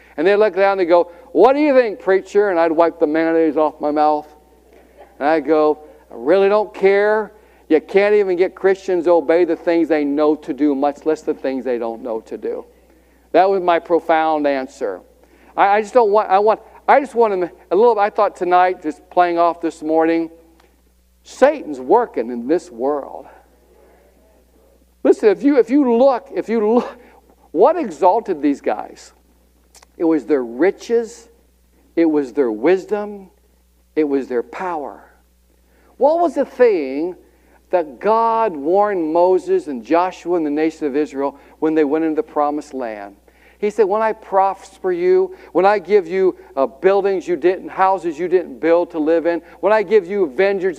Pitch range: 155-235 Hz